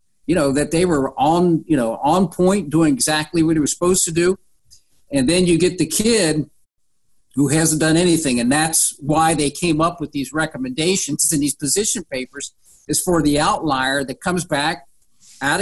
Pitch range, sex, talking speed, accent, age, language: 150-195 Hz, male, 190 wpm, American, 50-69, English